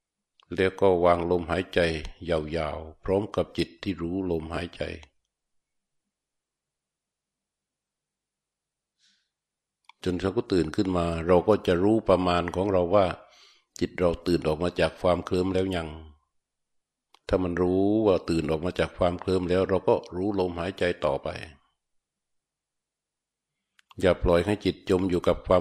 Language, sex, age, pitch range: Thai, male, 60-79, 85-95 Hz